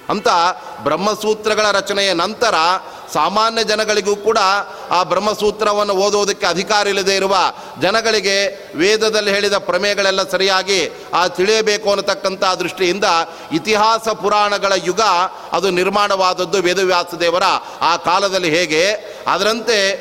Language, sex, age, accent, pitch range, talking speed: Kannada, male, 30-49, native, 185-210 Hz, 95 wpm